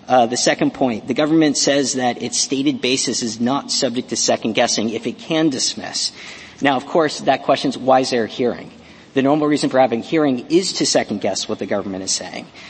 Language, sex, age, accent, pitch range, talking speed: English, male, 50-69, American, 120-140 Hz, 215 wpm